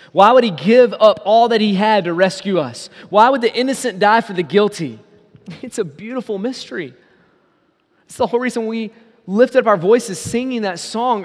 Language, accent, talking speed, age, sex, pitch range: English, American, 190 wpm, 20-39, male, 140-205 Hz